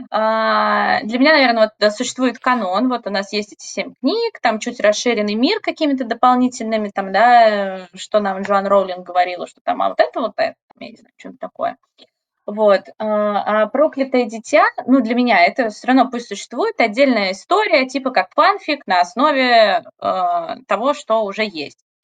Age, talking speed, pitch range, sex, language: 20-39, 175 wpm, 215-265 Hz, female, Russian